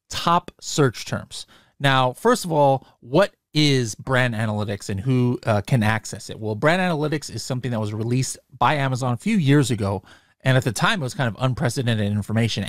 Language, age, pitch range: English, 30-49, 115-145 Hz